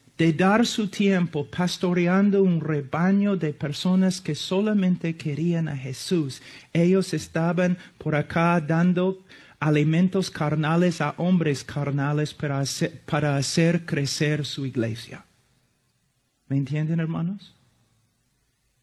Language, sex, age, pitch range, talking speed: Spanish, male, 40-59, 135-180 Hz, 110 wpm